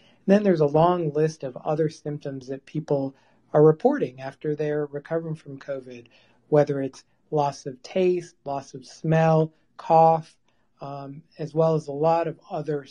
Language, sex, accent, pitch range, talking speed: English, male, American, 140-165 Hz, 160 wpm